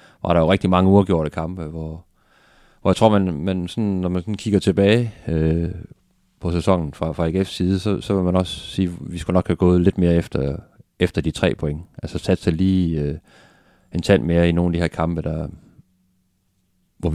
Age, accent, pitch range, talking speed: 30-49, native, 80-95 Hz, 210 wpm